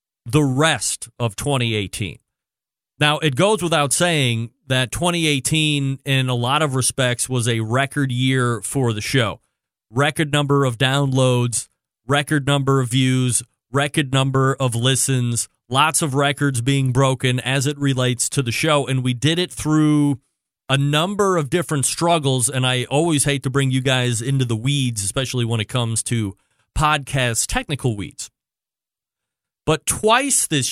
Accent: American